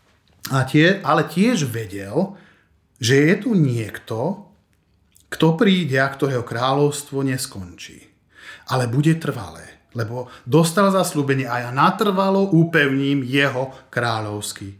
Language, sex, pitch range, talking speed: Slovak, male, 125-160 Hz, 110 wpm